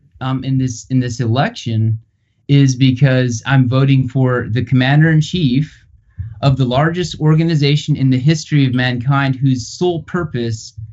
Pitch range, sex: 120-150 Hz, male